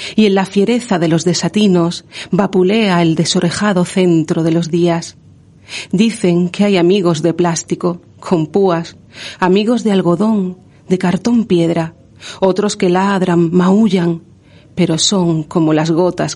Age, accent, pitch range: 40-59, Spanish, 170-200 Hz